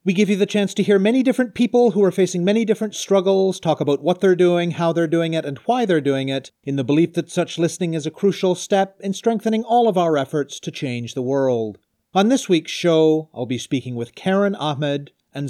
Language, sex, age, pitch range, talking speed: English, male, 40-59, 135-200 Hz, 235 wpm